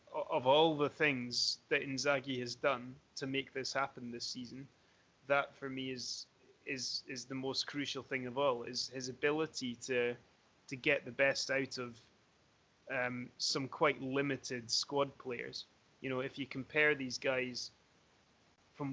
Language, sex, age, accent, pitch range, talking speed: English, male, 20-39, British, 125-140 Hz, 160 wpm